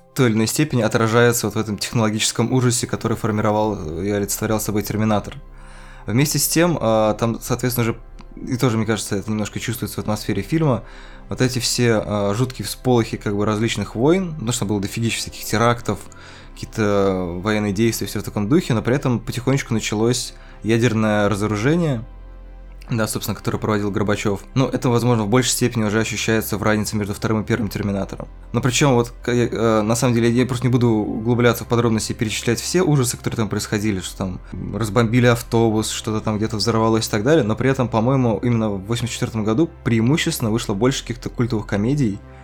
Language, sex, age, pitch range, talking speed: Russian, male, 20-39, 105-120 Hz, 180 wpm